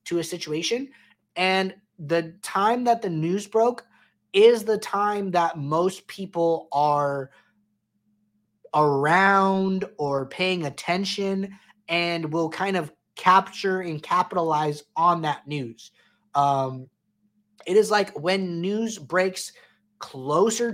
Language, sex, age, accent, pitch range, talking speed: English, male, 20-39, American, 150-190 Hz, 115 wpm